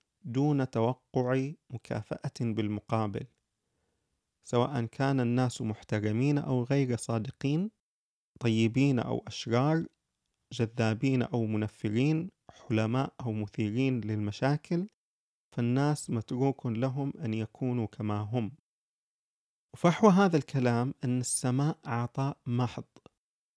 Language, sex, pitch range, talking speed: Arabic, male, 115-145 Hz, 90 wpm